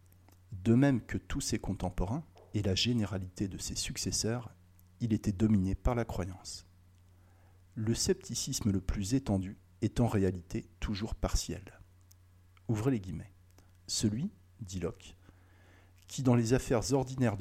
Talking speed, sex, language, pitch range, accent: 135 wpm, male, French, 90-120 Hz, French